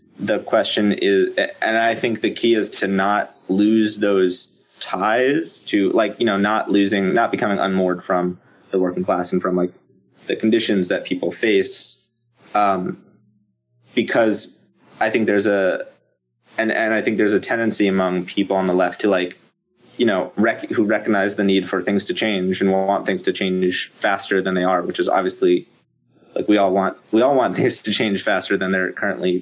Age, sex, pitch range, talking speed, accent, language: 20-39, male, 90-105 Hz, 190 wpm, American, English